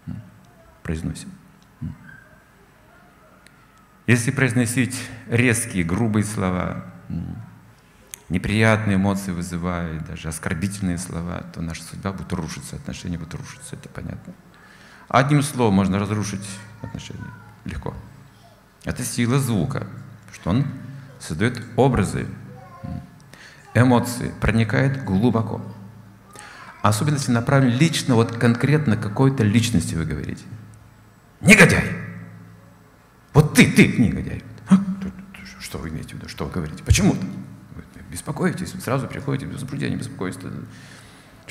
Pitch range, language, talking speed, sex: 90-130 Hz, Russian, 105 wpm, male